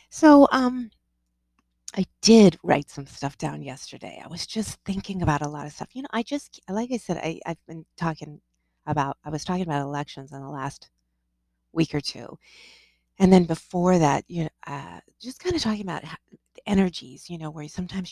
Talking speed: 190 wpm